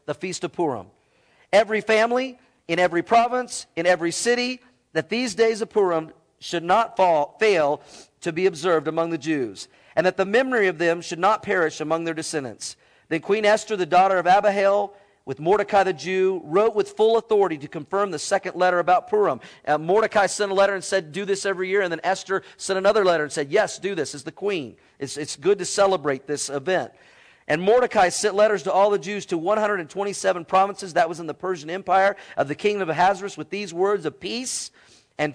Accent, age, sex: American, 40-59, male